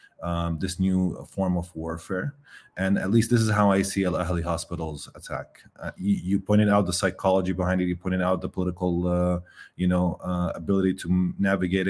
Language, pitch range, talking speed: English, 90-105 Hz, 195 wpm